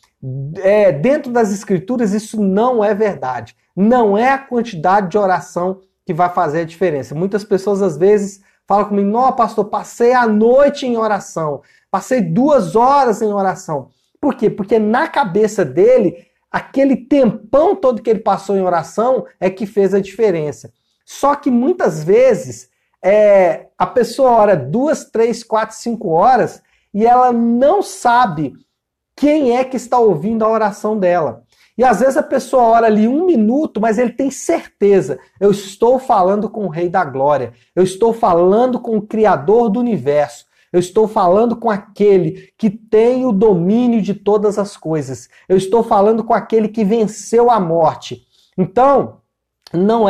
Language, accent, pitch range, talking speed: Portuguese, Brazilian, 190-240 Hz, 155 wpm